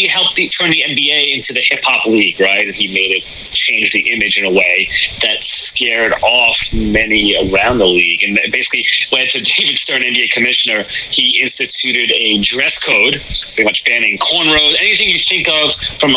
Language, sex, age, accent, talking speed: English, male, 30-49, American, 180 wpm